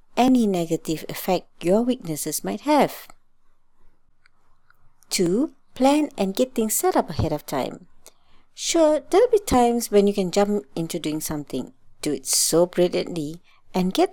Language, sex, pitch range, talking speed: English, female, 165-265 Hz, 145 wpm